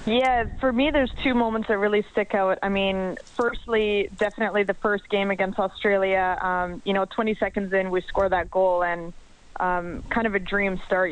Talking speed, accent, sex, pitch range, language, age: 195 wpm, American, female, 185-210 Hz, English, 20-39